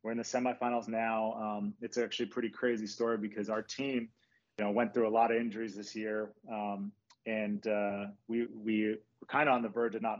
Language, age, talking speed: English, 30-49, 225 wpm